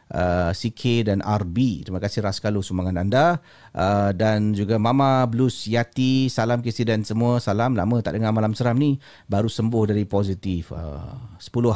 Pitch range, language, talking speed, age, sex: 95-135 Hz, Malay, 160 wpm, 40-59, male